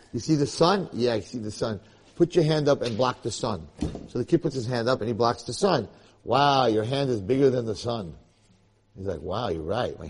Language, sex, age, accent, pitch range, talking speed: English, male, 50-69, American, 105-130 Hz, 255 wpm